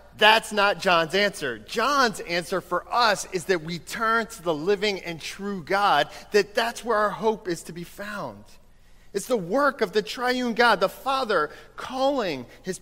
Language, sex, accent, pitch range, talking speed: English, male, American, 165-235 Hz, 180 wpm